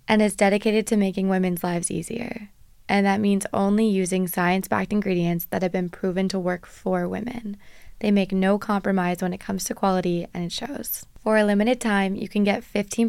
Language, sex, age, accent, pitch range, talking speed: English, female, 20-39, American, 190-215 Hz, 195 wpm